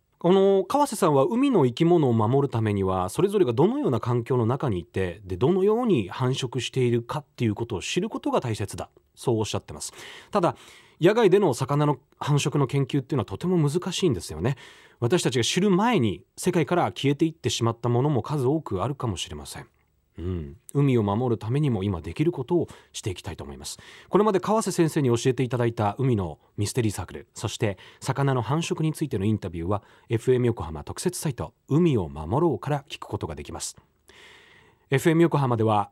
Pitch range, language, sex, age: 105-165 Hz, Japanese, male, 30-49